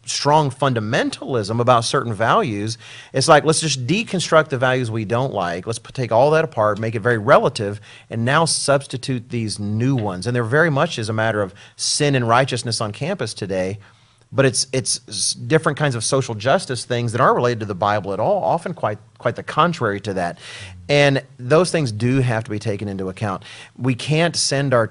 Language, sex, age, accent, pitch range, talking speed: English, male, 40-59, American, 110-135 Hz, 200 wpm